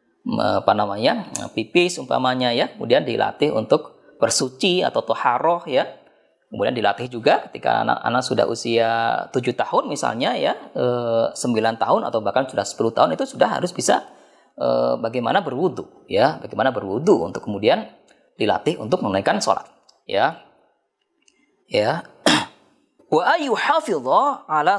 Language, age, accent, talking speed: Indonesian, 20-39, native, 120 wpm